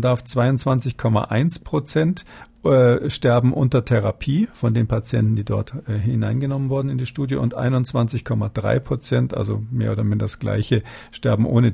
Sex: male